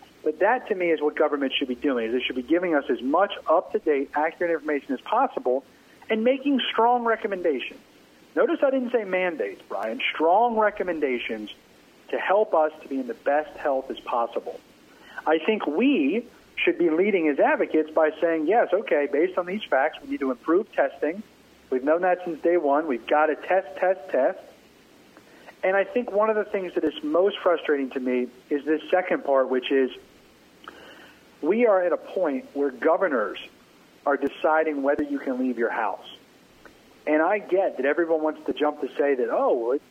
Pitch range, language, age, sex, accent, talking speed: 145-215 Hz, English, 40-59, male, American, 190 wpm